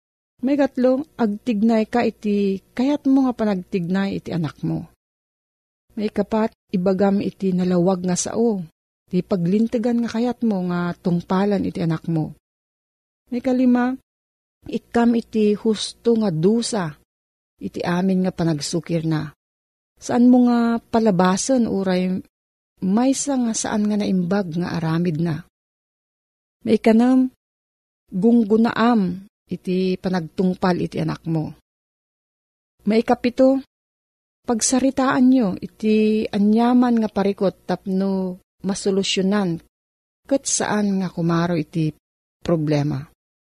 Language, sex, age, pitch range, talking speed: Filipino, female, 40-59, 170-230 Hz, 105 wpm